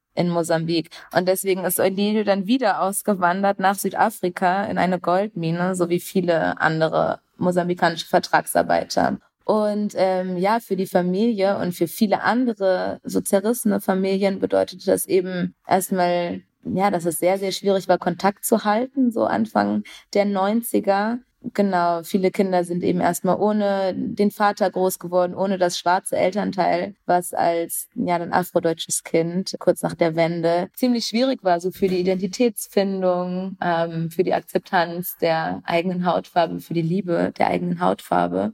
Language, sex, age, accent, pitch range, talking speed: German, female, 20-39, German, 170-195 Hz, 150 wpm